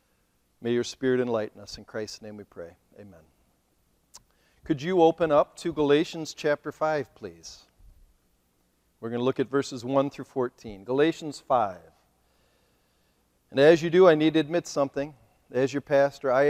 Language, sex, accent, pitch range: English, male, American, 120-175 Hz